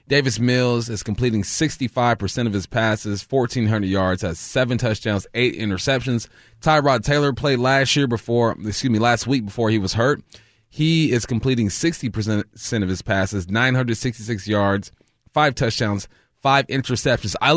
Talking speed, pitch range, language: 145 wpm, 105-135 Hz, English